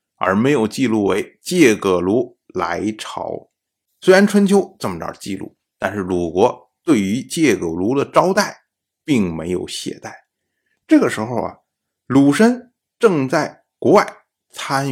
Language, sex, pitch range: Chinese, male, 100-145 Hz